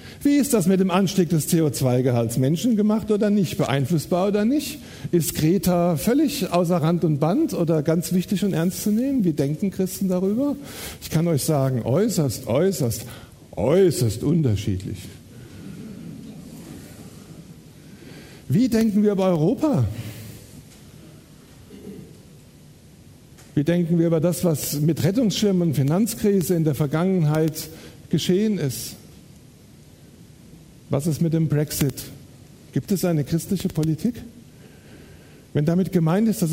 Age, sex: 60-79, male